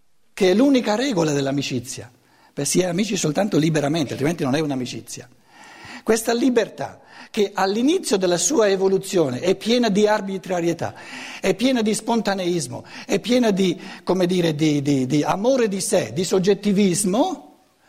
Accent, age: native, 60-79